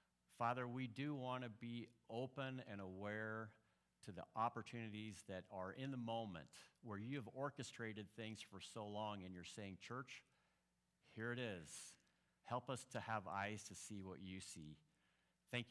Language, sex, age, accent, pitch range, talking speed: English, male, 50-69, American, 95-120 Hz, 165 wpm